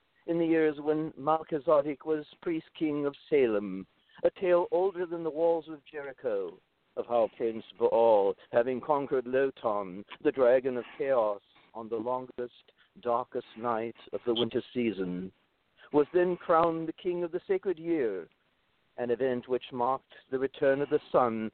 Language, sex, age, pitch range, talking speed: English, male, 60-79, 120-155 Hz, 155 wpm